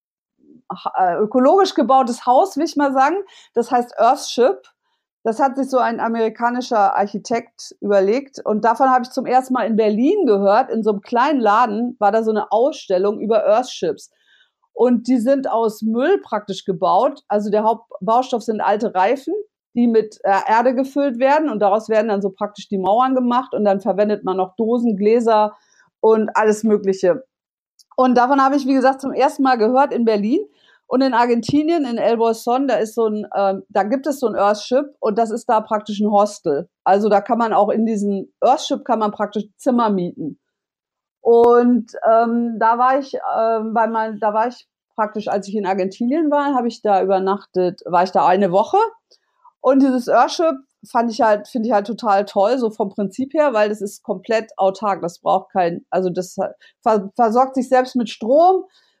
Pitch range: 210-265 Hz